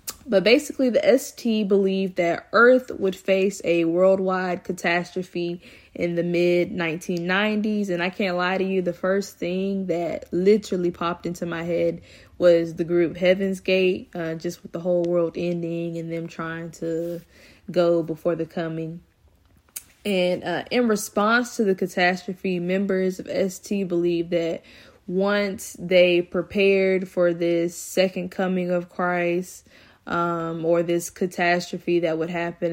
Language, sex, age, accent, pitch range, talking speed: English, female, 10-29, American, 170-195 Hz, 140 wpm